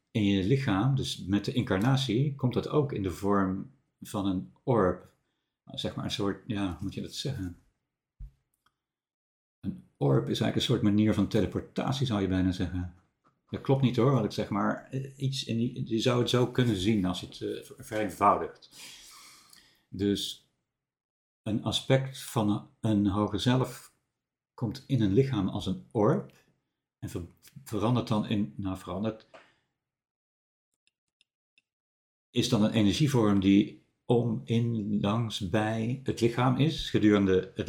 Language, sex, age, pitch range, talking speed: Dutch, male, 60-79, 95-125 Hz, 155 wpm